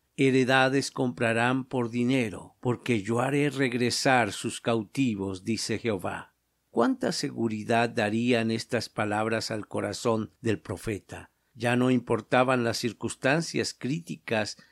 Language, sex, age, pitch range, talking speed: Spanish, male, 50-69, 115-130 Hz, 110 wpm